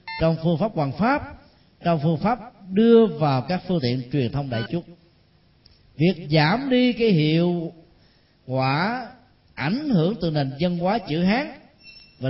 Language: Vietnamese